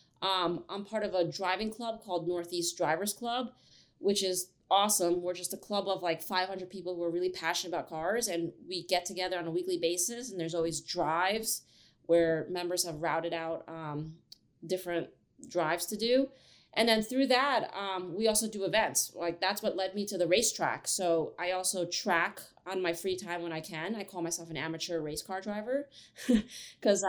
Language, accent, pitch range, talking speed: English, American, 175-210 Hz, 195 wpm